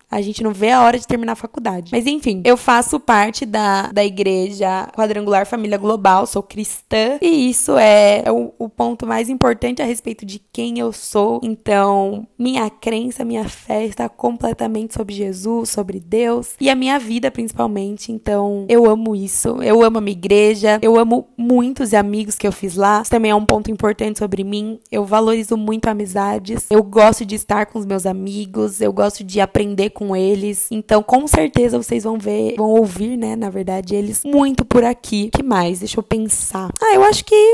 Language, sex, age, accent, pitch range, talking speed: Portuguese, female, 10-29, Brazilian, 205-235 Hz, 195 wpm